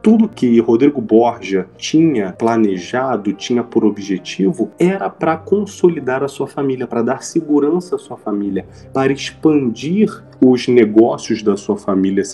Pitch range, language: 115-150 Hz, Portuguese